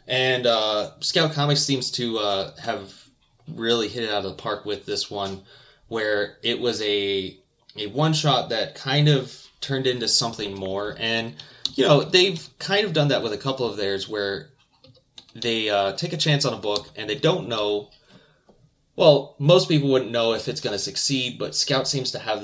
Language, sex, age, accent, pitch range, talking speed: English, male, 20-39, American, 100-135 Hz, 195 wpm